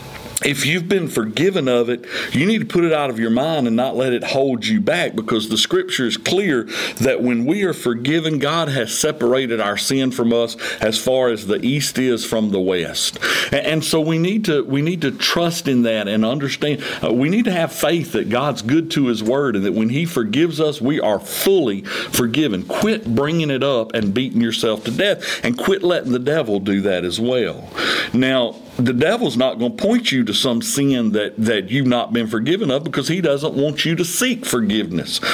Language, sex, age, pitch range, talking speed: English, male, 50-69, 115-155 Hz, 215 wpm